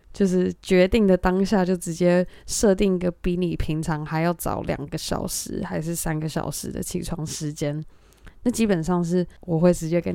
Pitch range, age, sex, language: 165-200 Hz, 20-39, female, Chinese